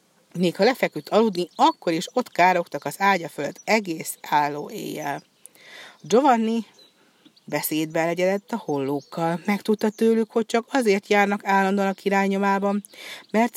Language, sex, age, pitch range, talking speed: Hungarian, female, 60-79, 165-215 Hz, 130 wpm